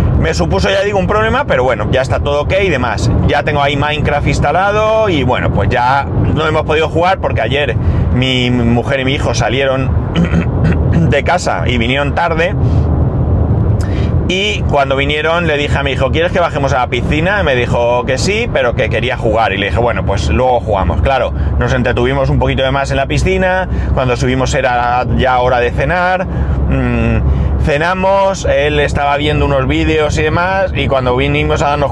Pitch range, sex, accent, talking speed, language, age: 95-135 Hz, male, Spanish, 190 wpm, Spanish, 30-49